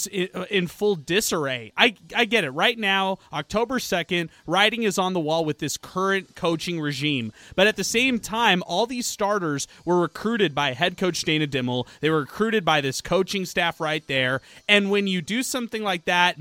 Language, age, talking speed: English, 30-49, 190 wpm